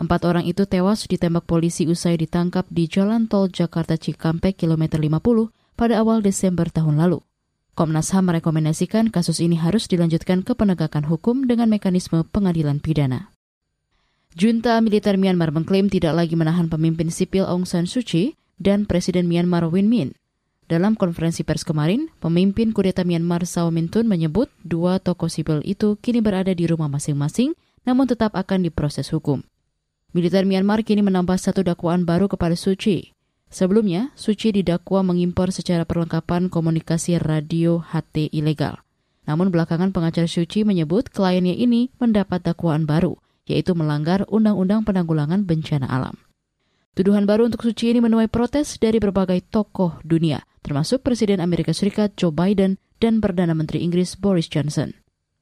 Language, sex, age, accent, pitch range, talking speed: Indonesian, female, 20-39, native, 165-205 Hz, 145 wpm